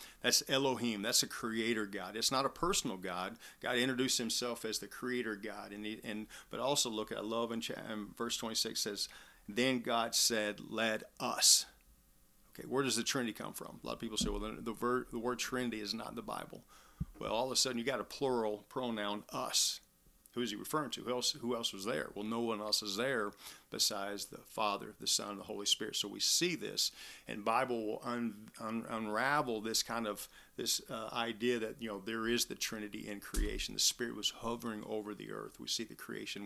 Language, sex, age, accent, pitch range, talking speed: English, male, 40-59, American, 105-120 Hz, 220 wpm